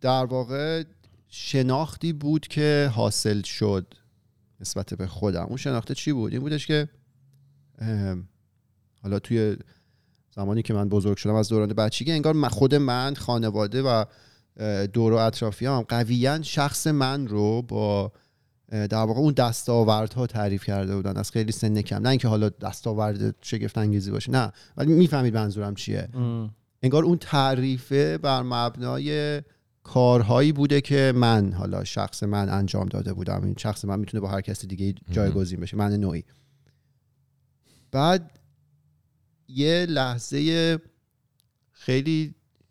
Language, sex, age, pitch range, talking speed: Persian, male, 40-59, 105-135 Hz, 135 wpm